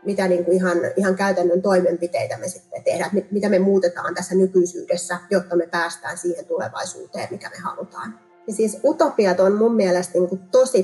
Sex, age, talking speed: female, 30-49, 185 wpm